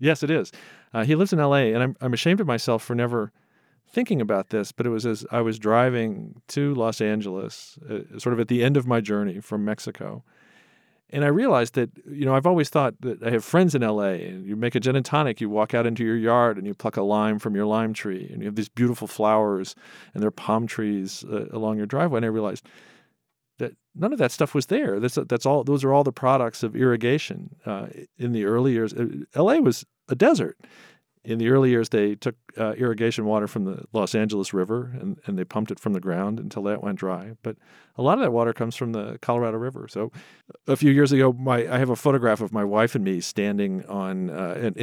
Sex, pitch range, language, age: male, 105-135 Hz, English, 40-59